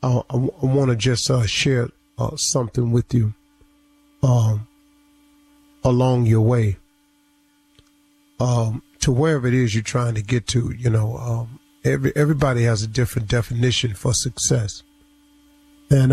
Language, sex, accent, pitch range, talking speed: English, male, American, 120-145 Hz, 140 wpm